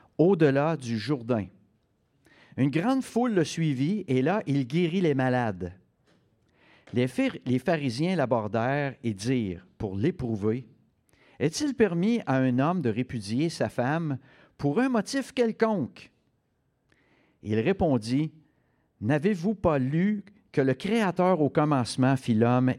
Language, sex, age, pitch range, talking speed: French, male, 50-69, 115-165 Hz, 120 wpm